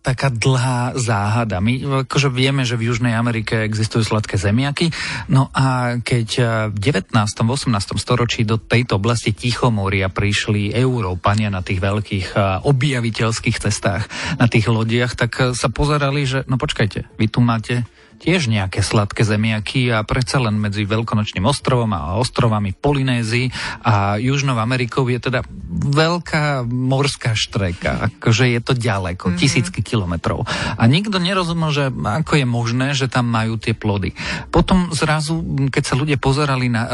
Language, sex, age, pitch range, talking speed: Slovak, male, 40-59, 110-135 Hz, 145 wpm